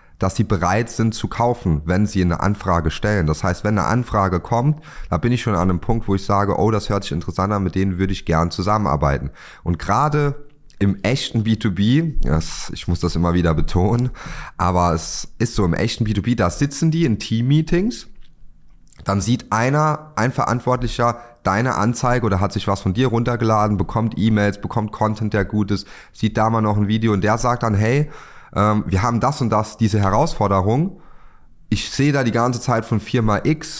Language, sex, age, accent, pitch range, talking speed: German, male, 30-49, German, 95-120 Hz, 195 wpm